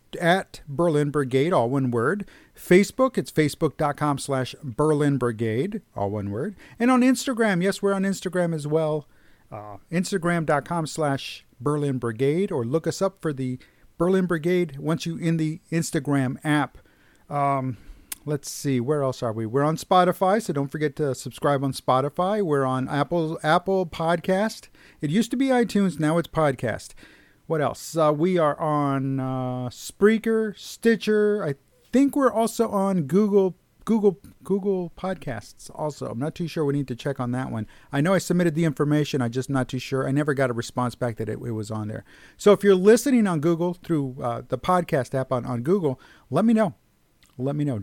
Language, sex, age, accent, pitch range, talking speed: English, male, 50-69, American, 135-195 Hz, 180 wpm